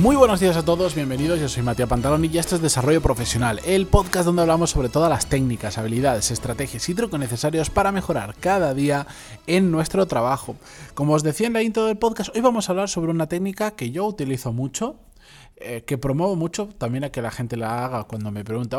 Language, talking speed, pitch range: Spanish, 215 wpm, 125-180 Hz